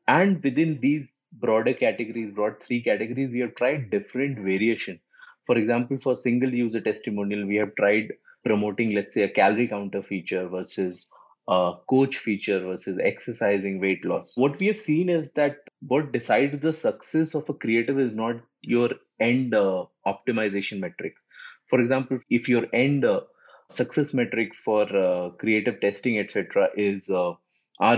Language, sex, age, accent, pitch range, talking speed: English, male, 30-49, Indian, 110-140 Hz, 155 wpm